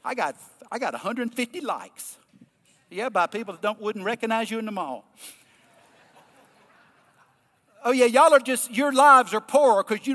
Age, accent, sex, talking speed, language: 50-69, American, male, 165 wpm, English